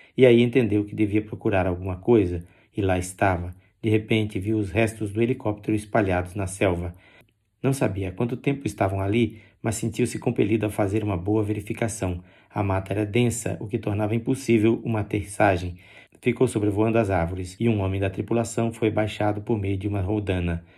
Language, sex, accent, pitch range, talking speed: Portuguese, male, Brazilian, 100-115 Hz, 175 wpm